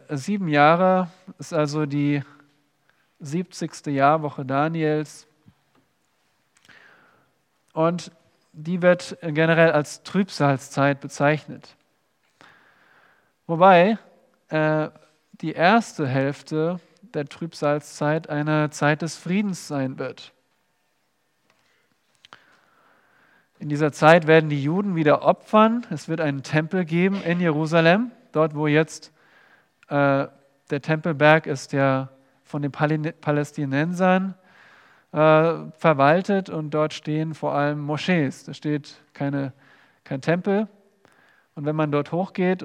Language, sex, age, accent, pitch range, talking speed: German, male, 40-59, German, 145-170 Hz, 100 wpm